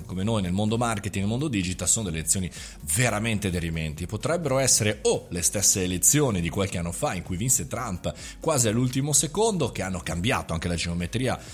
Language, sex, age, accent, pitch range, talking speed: Italian, male, 30-49, native, 90-150 Hz, 190 wpm